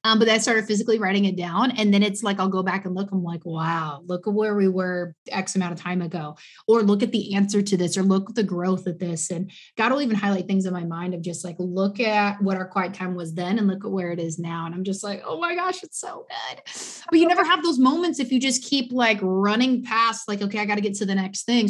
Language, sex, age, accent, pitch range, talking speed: English, female, 20-39, American, 185-215 Hz, 290 wpm